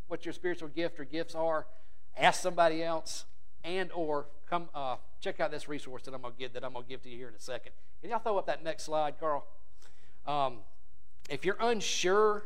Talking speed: 210 wpm